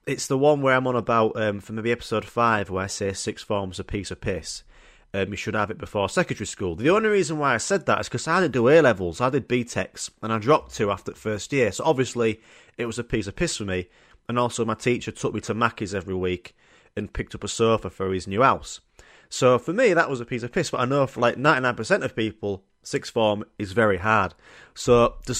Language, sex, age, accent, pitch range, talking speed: English, male, 30-49, British, 105-140 Hz, 250 wpm